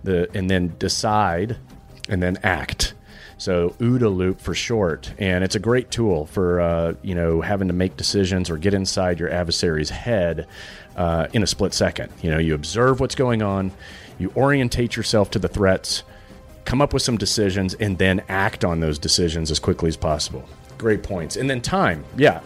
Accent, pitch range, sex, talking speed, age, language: American, 95-120 Hz, male, 185 wpm, 30-49, English